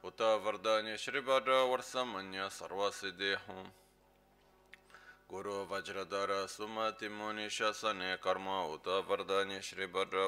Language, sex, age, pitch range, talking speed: Italian, male, 20-39, 95-110 Hz, 95 wpm